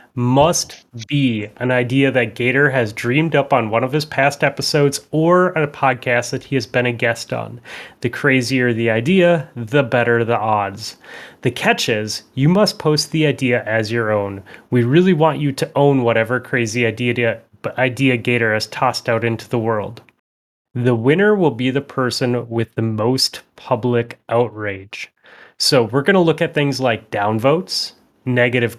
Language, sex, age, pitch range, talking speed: English, male, 30-49, 115-145 Hz, 170 wpm